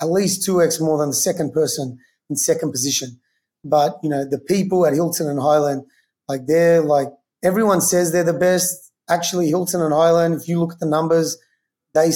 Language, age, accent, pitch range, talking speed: English, 30-49, Australian, 150-165 Hz, 195 wpm